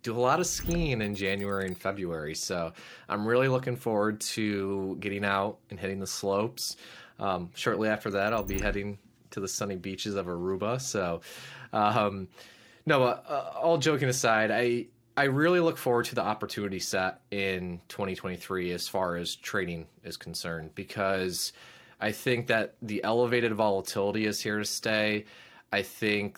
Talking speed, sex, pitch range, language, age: 160 wpm, male, 95-115 Hz, English, 20-39